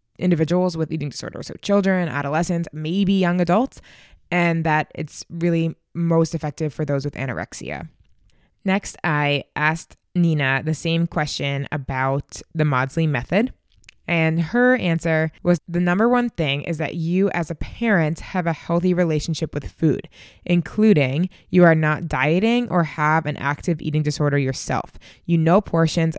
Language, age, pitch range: English, 20-39, 145-175 Hz